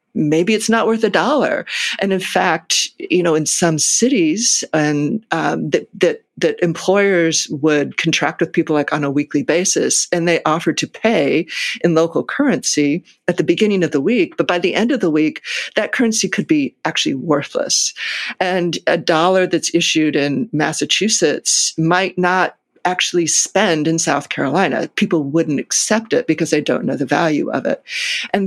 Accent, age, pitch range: American, 50-69, 160-215 Hz